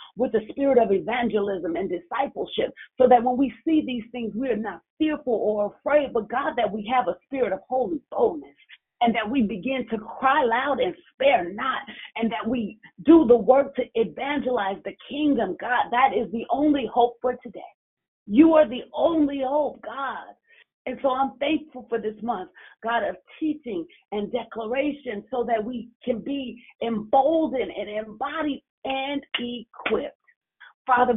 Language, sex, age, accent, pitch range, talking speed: English, female, 40-59, American, 220-275 Hz, 165 wpm